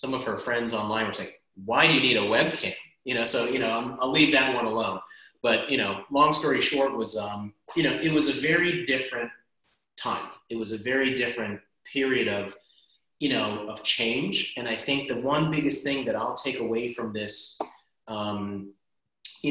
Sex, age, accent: male, 30-49, American